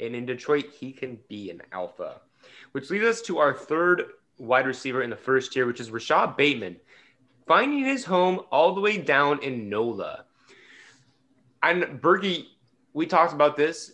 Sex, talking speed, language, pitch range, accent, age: male, 170 wpm, English, 125-165 Hz, American, 20-39